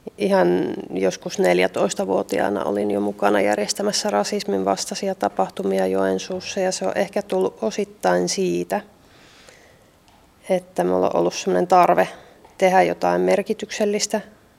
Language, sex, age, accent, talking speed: Finnish, female, 30-49, native, 105 wpm